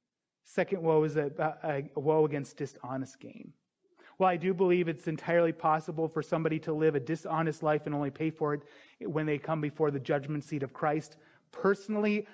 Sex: male